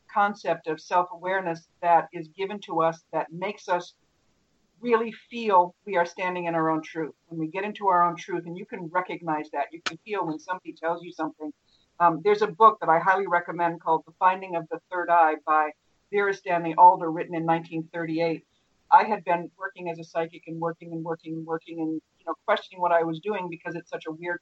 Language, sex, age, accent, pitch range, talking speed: English, female, 50-69, American, 165-190 Hz, 215 wpm